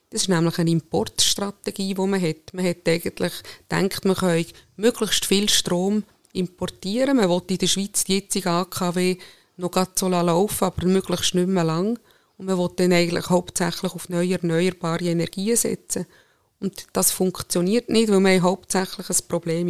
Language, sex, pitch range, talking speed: German, female, 175-205 Hz, 170 wpm